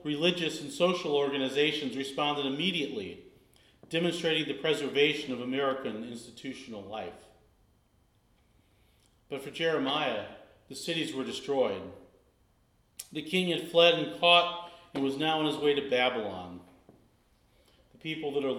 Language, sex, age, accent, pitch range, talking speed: English, male, 40-59, American, 125-150 Hz, 125 wpm